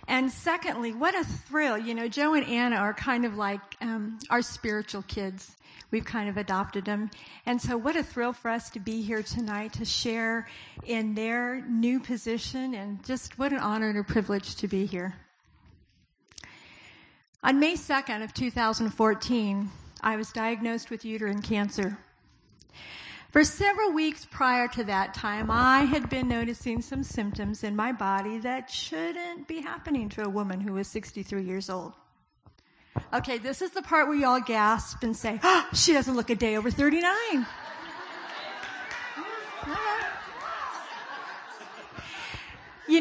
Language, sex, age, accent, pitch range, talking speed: English, female, 50-69, American, 215-265 Hz, 160 wpm